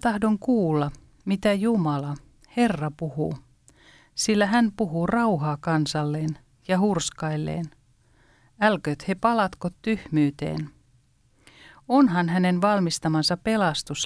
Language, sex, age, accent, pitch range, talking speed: Finnish, female, 40-59, native, 150-200 Hz, 90 wpm